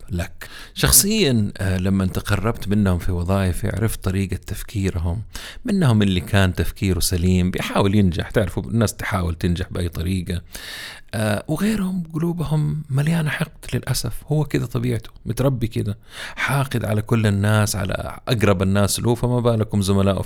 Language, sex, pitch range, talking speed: Arabic, male, 95-120 Hz, 135 wpm